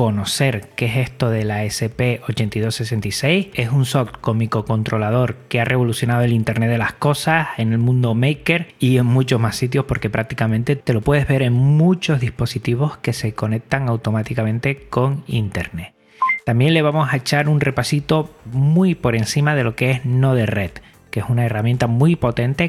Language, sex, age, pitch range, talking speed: Spanish, male, 30-49, 115-140 Hz, 170 wpm